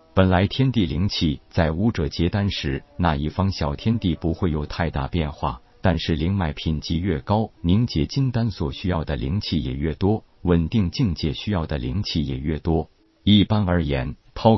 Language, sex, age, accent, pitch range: Chinese, male, 50-69, native, 80-100 Hz